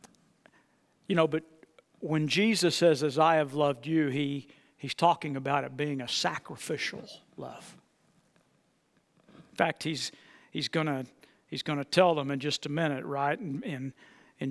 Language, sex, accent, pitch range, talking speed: English, male, American, 140-165 Hz, 155 wpm